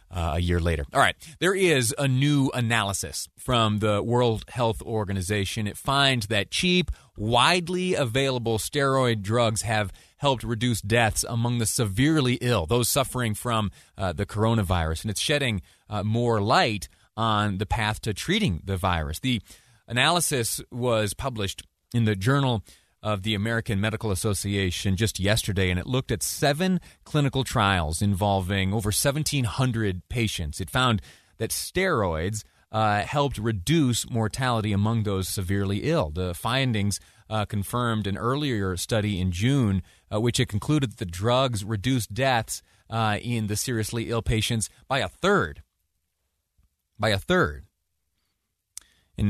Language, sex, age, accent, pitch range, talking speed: English, male, 30-49, American, 95-120 Hz, 145 wpm